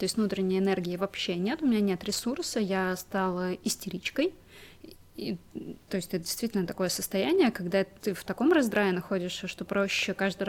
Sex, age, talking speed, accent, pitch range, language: female, 20-39, 165 wpm, native, 185-220 Hz, Russian